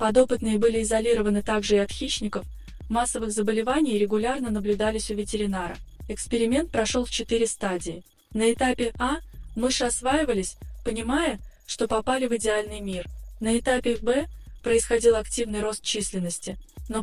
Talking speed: 130 wpm